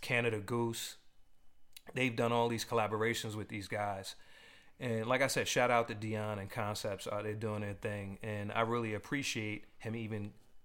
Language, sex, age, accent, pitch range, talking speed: English, male, 30-49, American, 105-115 Hz, 175 wpm